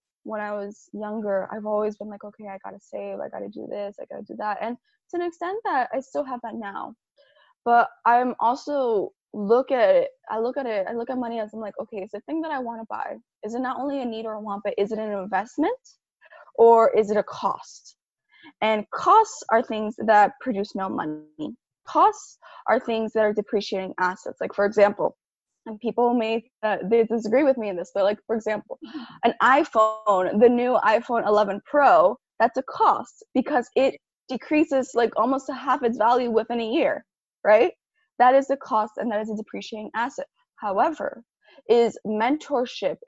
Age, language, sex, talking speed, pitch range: 10-29, English, female, 205 wpm, 210-265 Hz